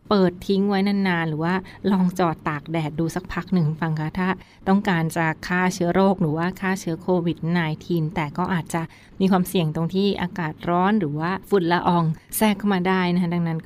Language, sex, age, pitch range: Thai, female, 20-39, 165-195 Hz